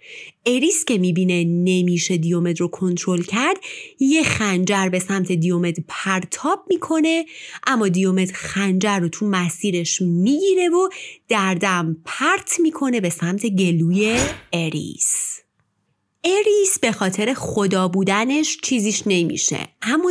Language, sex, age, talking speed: Persian, female, 30-49, 115 wpm